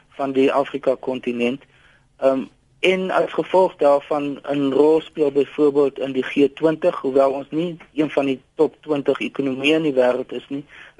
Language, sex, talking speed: Dutch, male, 160 wpm